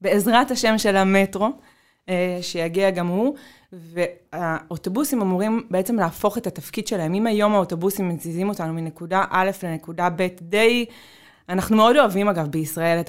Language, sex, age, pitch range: Hebrew, female, 20-39, 180-230 Hz